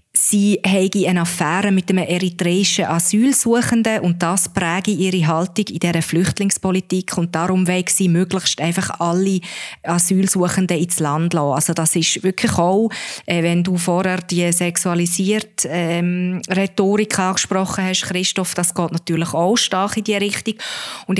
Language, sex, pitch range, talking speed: German, female, 170-195 Hz, 145 wpm